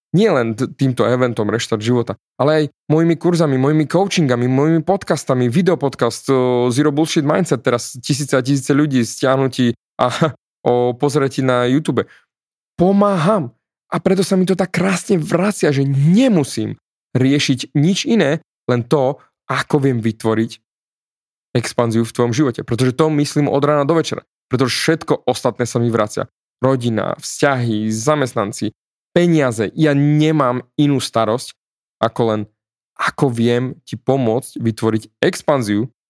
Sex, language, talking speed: male, Slovak, 135 wpm